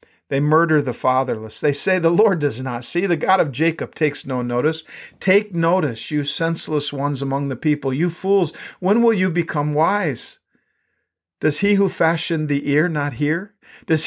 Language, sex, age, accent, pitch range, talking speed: English, male, 50-69, American, 135-170 Hz, 180 wpm